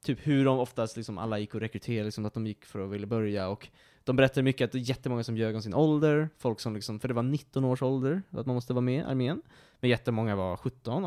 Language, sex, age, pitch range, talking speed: Swedish, male, 20-39, 110-145 Hz, 270 wpm